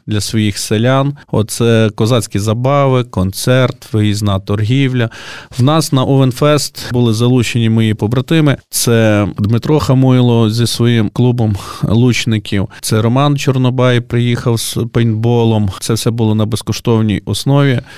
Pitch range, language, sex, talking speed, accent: 110-130 Hz, Ukrainian, male, 120 wpm, native